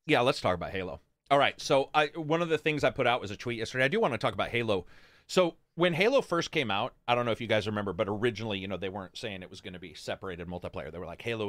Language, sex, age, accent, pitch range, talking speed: English, male, 30-49, American, 100-145 Hz, 300 wpm